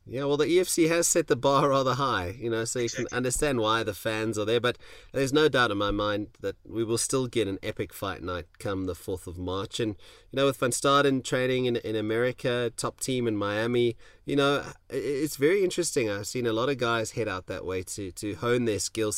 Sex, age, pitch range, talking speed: male, 30-49, 100-135 Hz, 240 wpm